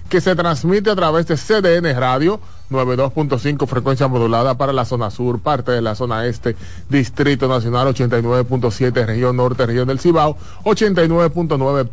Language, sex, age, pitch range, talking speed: Spanish, male, 30-49, 120-185 Hz, 145 wpm